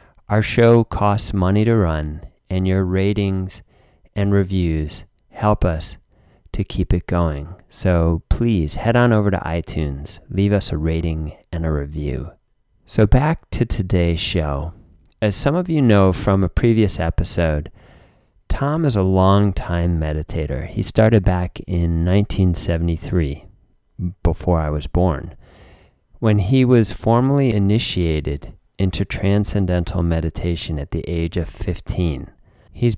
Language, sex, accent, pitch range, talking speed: English, male, American, 80-100 Hz, 135 wpm